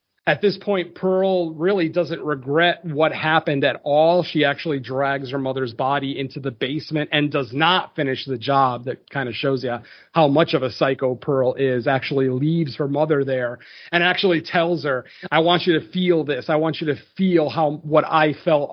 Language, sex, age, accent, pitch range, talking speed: English, male, 40-59, American, 140-175 Hz, 200 wpm